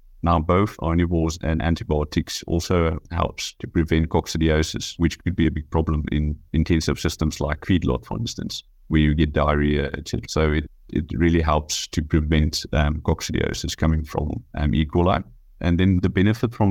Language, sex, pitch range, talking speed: English, male, 75-85 Hz, 165 wpm